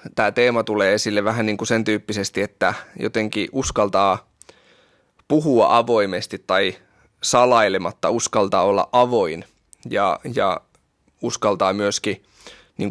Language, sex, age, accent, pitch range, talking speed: Finnish, male, 20-39, native, 100-120 Hz, 110 wpm